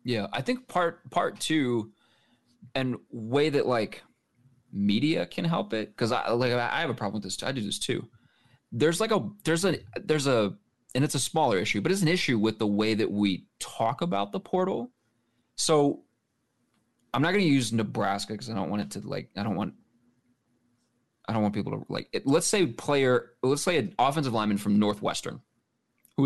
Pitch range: 105-135 Hz